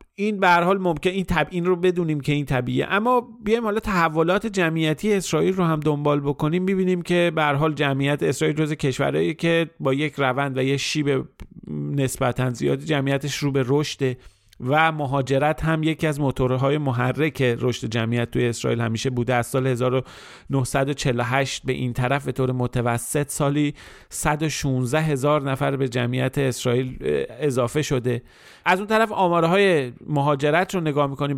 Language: Persian